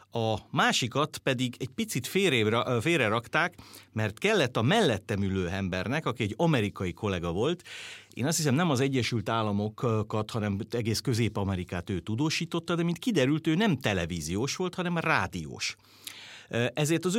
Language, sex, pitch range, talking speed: Hungarian, male, 100-135 Hz, 145 wpm